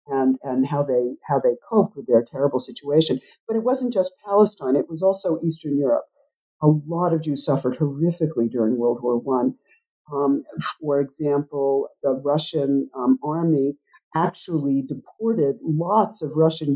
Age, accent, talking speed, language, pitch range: 50-69, American, 150 wpm, English, 140-170 Hz